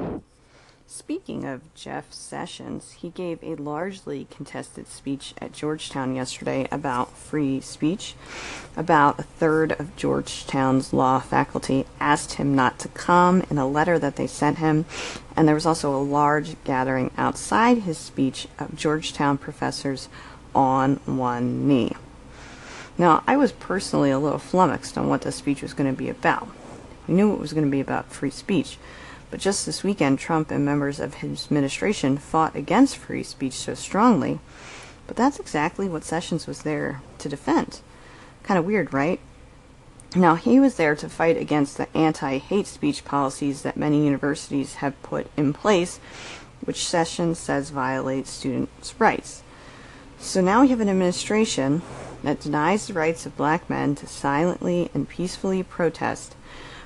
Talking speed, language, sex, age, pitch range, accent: 155 wpm, English, female, 40-59, 135-170 Hz, American